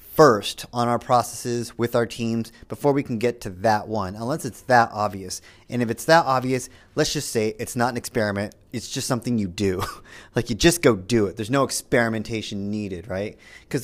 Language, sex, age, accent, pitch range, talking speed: English, male, 30-49, American, 110-140 Hz, 205 wpm